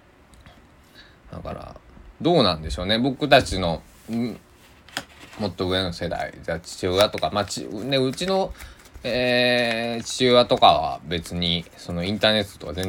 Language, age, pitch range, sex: Japanese, 20-39, 80-105 Hz, male